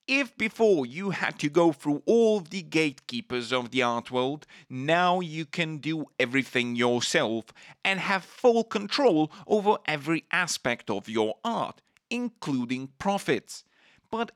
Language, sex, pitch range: English, male, 130-200 Hz